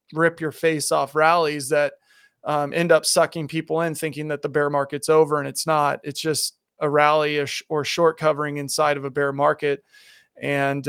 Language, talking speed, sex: English, 185 wpm, male